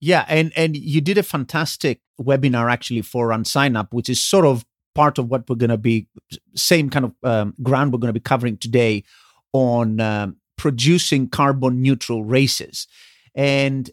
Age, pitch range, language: 30-49, 125-165 Hz, English